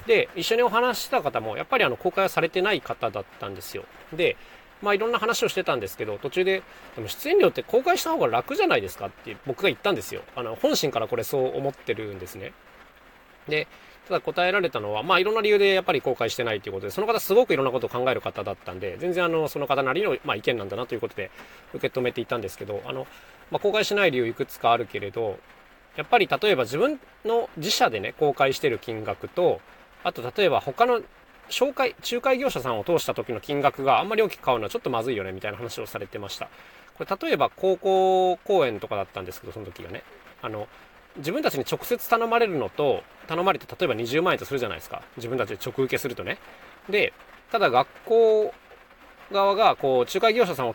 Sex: male